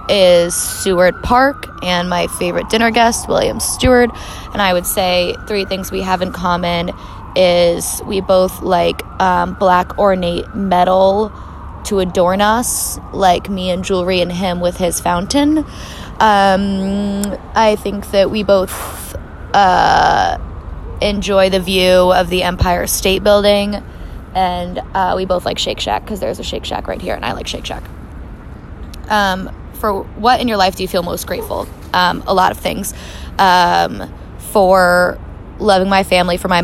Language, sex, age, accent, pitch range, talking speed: English, female, 10-29, American, 175-200 Hz, 155 wpm